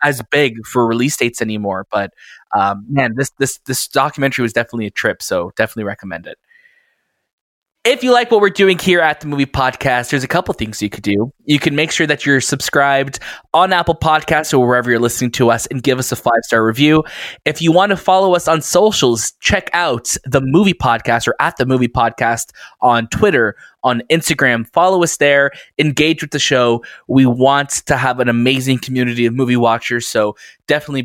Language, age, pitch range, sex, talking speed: English, 20-39, 120-160 Hz, male, 195 wpm